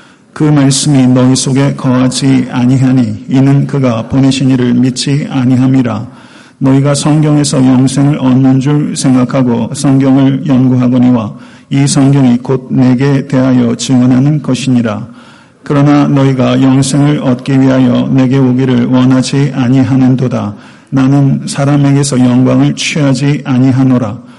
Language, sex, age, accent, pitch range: Korean, male, 40-59, native, 130-140 Hz